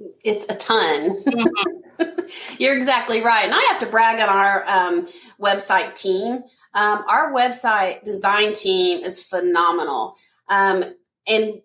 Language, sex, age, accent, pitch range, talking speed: English, female, 30-49, American, 190-255 Hz, 130 wpm